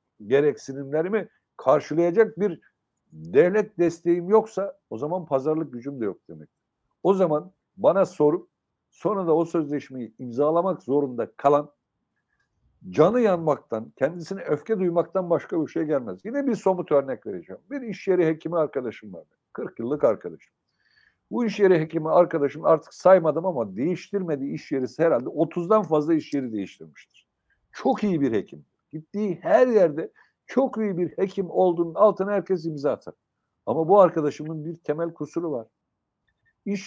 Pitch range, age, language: 150-205 Hz, 60-79, Turkish